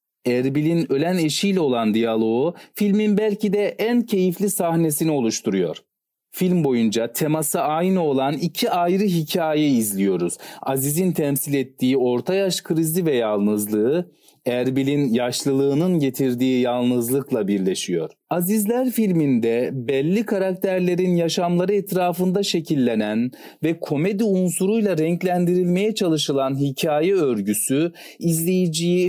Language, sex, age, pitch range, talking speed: Turkish, male, 40-59, 135-190 Hz, 100 wpm